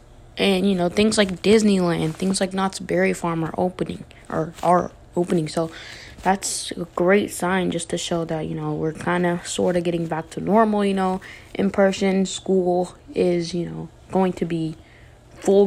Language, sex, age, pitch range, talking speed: English, female, 20-39, 165-205 Hz, 185 wpm